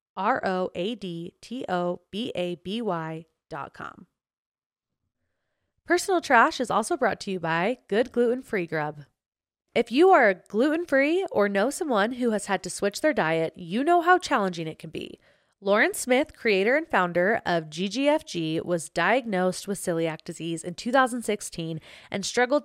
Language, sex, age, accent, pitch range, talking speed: English, female, 20-39, American, 175-240 Hz, 165 wpm